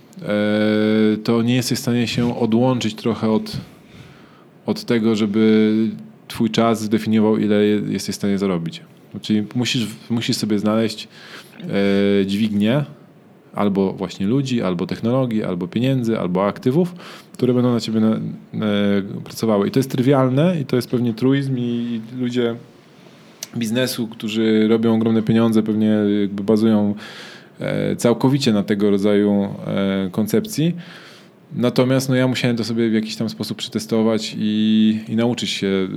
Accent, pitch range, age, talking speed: native, 105-130 Hz, 20-39, 130 wpm